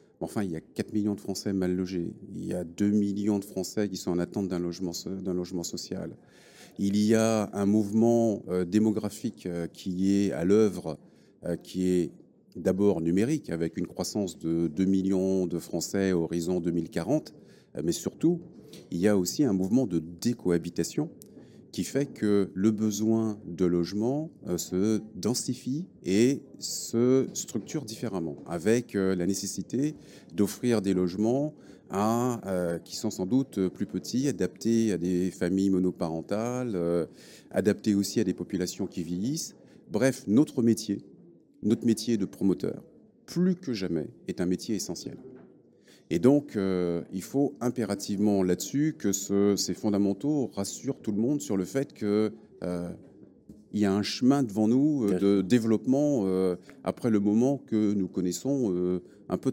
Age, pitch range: 40-59, 90-115 Hz